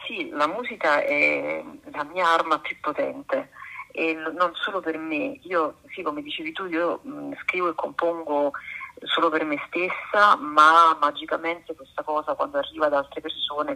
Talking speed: 155 wpm